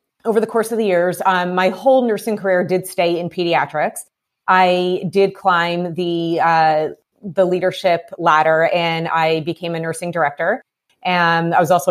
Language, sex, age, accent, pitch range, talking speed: English, female, 30-49, American, 170-205 Hz, 165 wpm